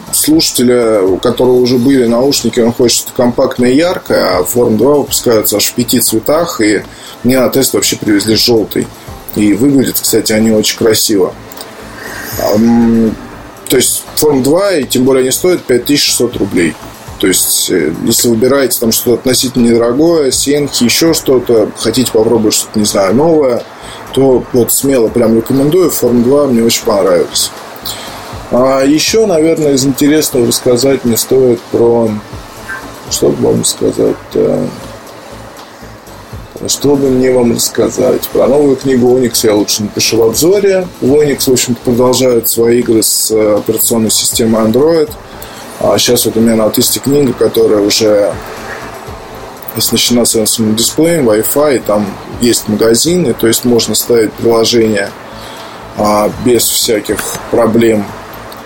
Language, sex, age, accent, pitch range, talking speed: Russian, male, 20-39, native, 110-130 Hz, 135 wpm